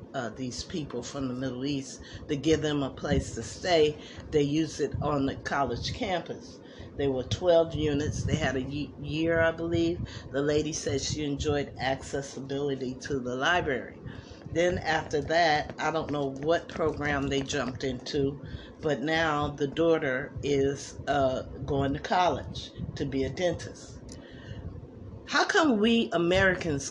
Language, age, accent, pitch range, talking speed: English, 50-69, American, 135-170 Hz, 150 wpm